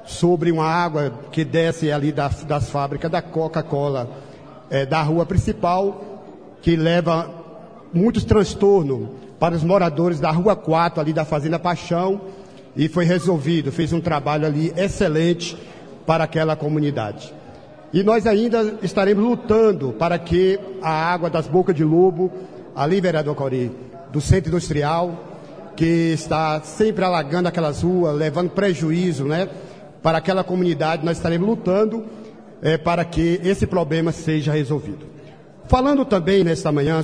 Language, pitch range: Portuguese, 150-180 Hz